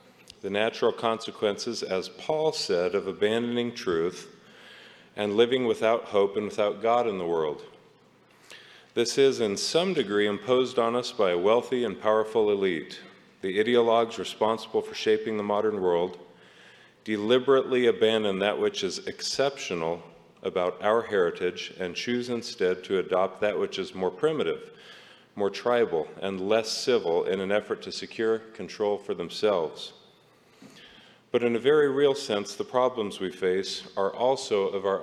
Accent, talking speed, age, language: American, 150 wpm, 50-69, English